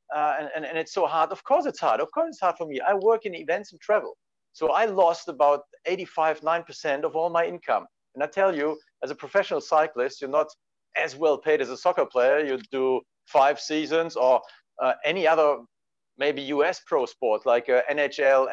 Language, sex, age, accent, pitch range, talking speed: English, male, 50-69, German, 140-200 Hz, 210 wpm